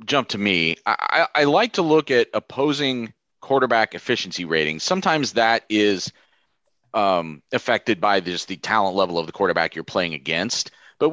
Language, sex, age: English, male, 30-49